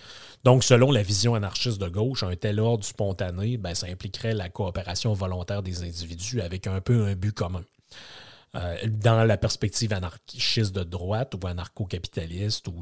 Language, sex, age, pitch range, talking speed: French, male, 30-49, 95-115 Hz, 165 wpm